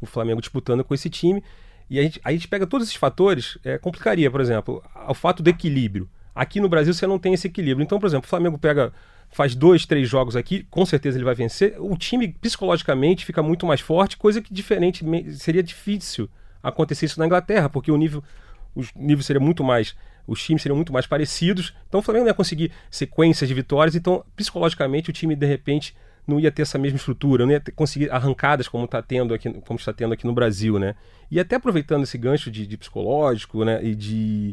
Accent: Brazilian